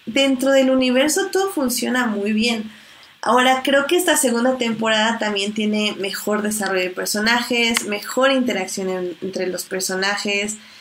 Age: 20-39